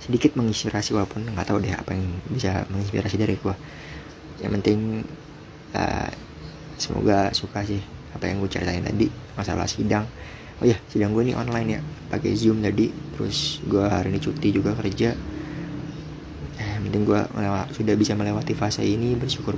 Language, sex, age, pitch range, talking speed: Indonesian, male, 20-39, 95-110 Hz, 160 wpm